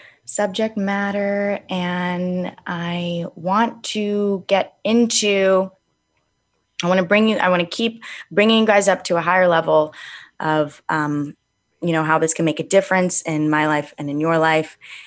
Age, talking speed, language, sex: 20-39, 165 wpm, English, female